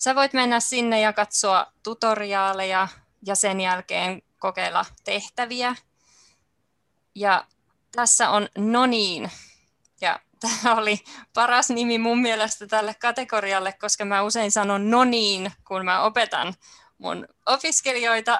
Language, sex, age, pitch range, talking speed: Finnish, female, 20-39, 190-235 Hz, 115 wpm